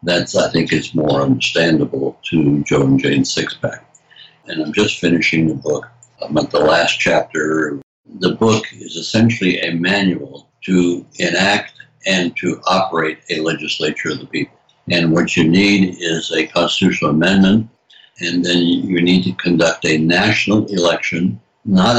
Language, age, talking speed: English, 60-79, 155 wpm